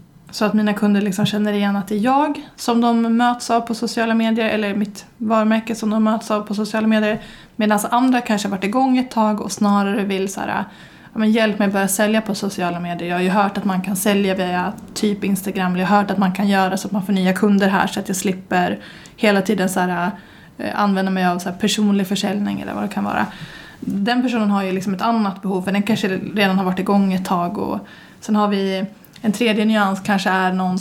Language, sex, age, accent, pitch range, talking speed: Swedish, female, 20-39, native, 190-220 Hz, 230 wpm